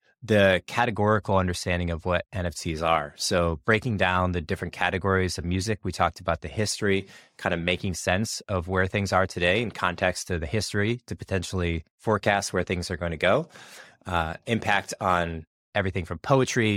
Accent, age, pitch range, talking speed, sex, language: American, 20-39, 85-105 Hz, 175 wpm, male, English